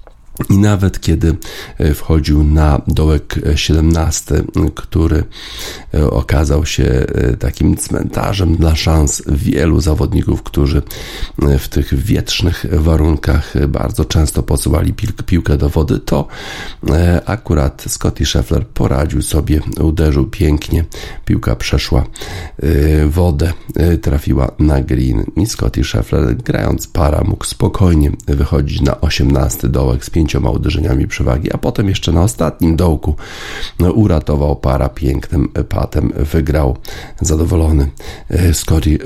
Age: 40-59